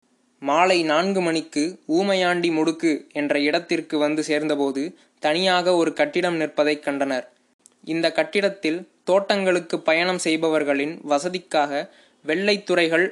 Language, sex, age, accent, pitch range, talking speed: Tamil, male, 20-39, native, 155-190 Hz, 95 wpm